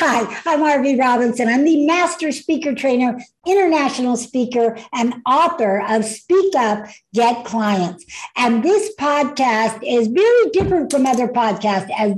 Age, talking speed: 60-79, 140 wpm